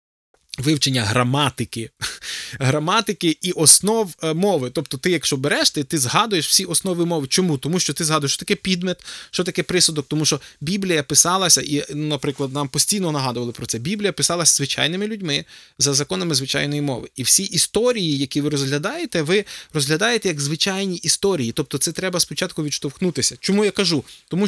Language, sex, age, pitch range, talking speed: Ukrainian, male, 20-39, 145-195 Hz, 160 wpm